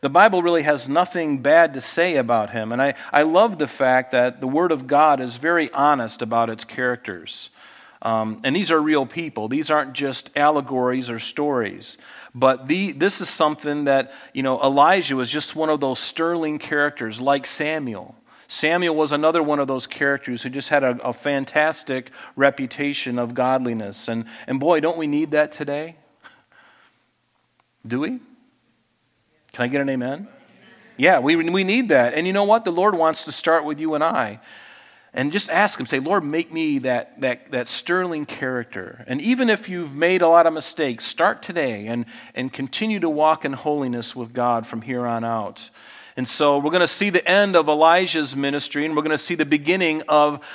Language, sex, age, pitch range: English, male, 40-59, 130-165 Hz